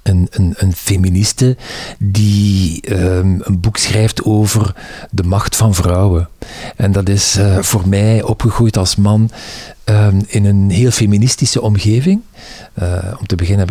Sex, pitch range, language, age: male, 95-115 Hz, Dutch, 50-69